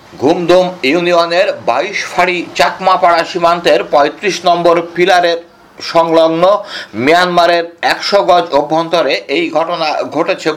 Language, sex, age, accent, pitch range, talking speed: Bengali, male, 60-79, native, 160-190 Hz, 95 wpm